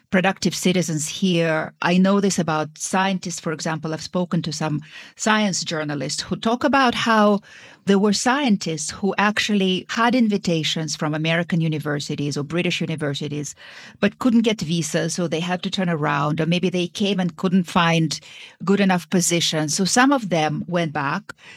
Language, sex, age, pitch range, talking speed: English, female, 40-59, 160-205 Hz, 165 wpm